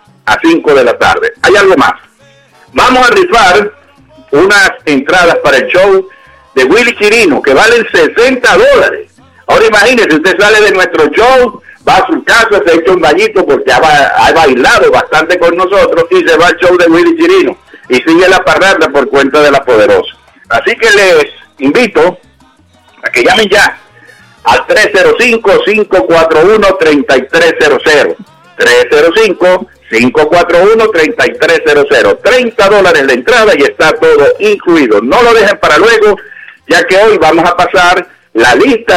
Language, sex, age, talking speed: English, male, 60-79, 150 wpm